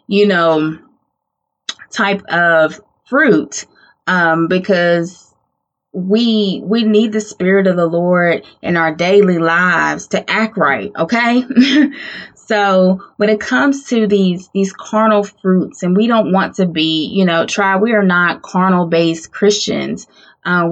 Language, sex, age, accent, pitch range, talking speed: English, female, 20-39, American, 170-205 Hz, 140 wpm